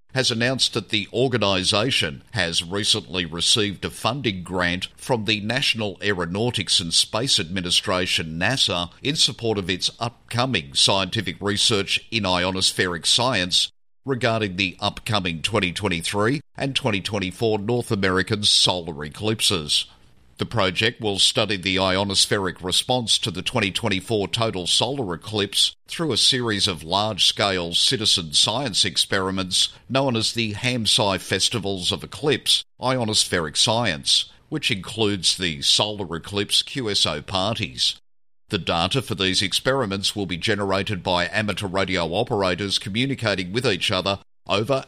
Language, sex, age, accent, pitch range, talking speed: English, male, 50-69, Australian, 90-115 Hz, 125 wpm